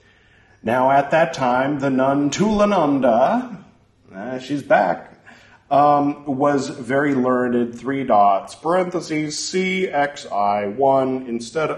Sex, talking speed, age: male, 100 wpm, 40-59